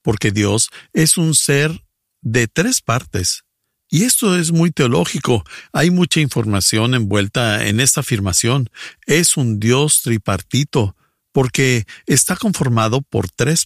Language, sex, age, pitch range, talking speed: English, male, 50-69, 105-150 Hz, 125 wpm